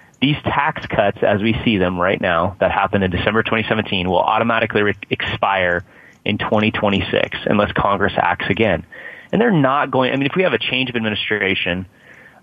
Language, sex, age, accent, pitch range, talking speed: English, male, 30-49, American, 95-115 Hz, 180 wpm